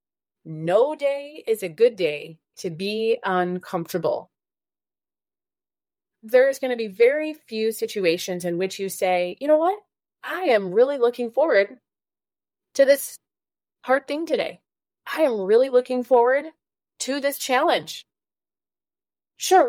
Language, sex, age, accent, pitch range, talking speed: English, female, 30-49, American, 190-270 Hz, 130 wpm